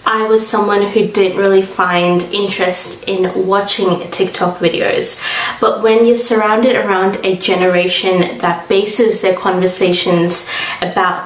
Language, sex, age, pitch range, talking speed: English, female, 20-39, 175-205 Hz, 130 wpm